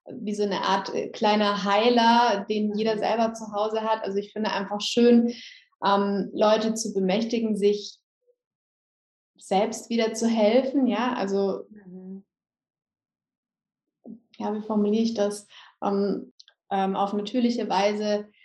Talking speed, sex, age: 120 wpm, female, 20-39